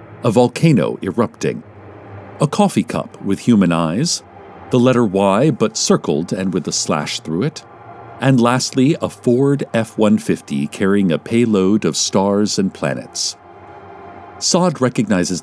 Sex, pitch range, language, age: male, 95-140 Hz, English, 50-69